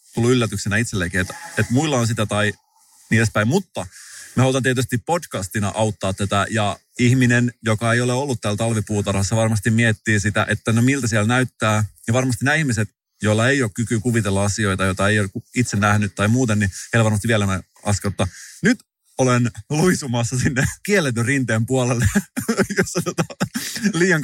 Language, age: Finnish, 30-49